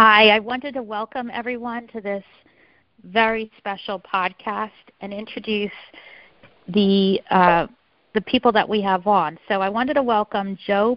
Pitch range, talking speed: 190-225 Hz, 150 wpm